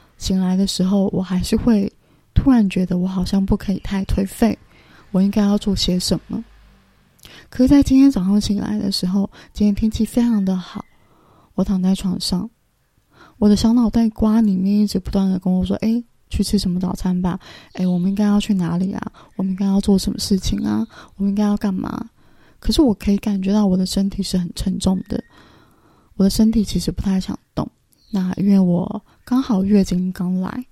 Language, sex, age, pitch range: Chinese, female, 20-39, 190-215 Hz